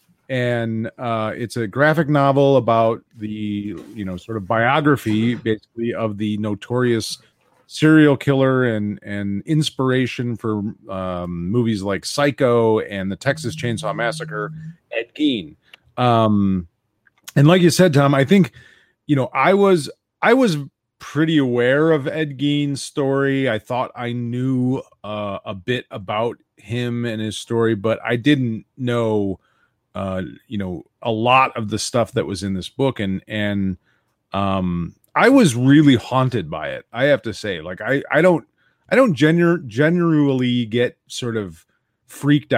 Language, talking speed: English, 150 wpm